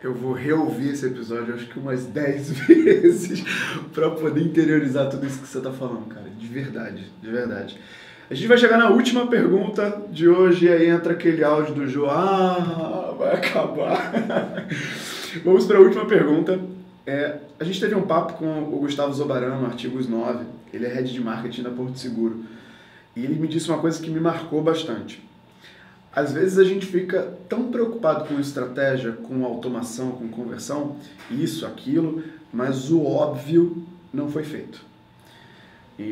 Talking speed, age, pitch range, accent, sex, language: 165 wpm, 20-39, 125-165 Hz, Brazilian, male, Portuguese